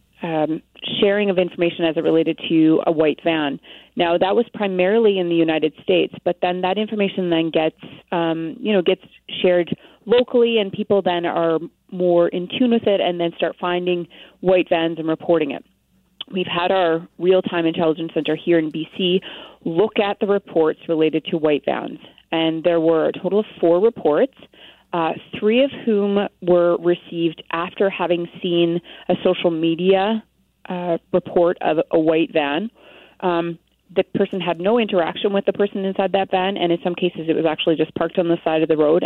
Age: 30-49